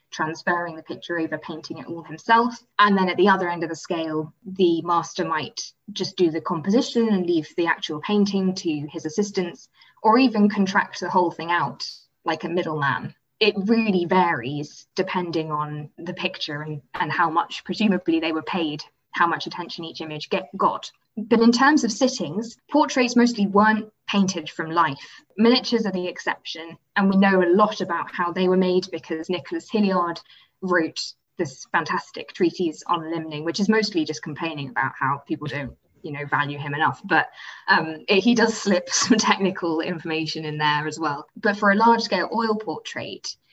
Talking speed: 180 wpm